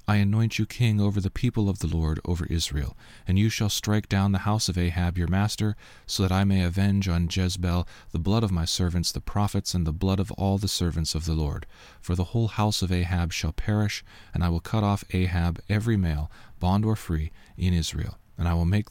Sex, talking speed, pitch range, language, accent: male, 230 wpm, 85-105 Hz, English, American